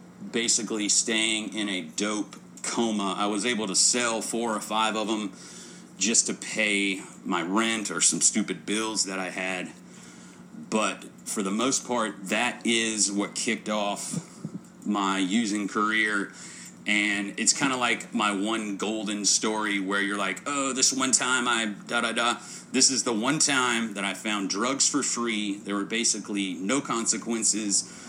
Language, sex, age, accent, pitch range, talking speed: English, male, 30-49, American, 100-115 Hz, 165 wpm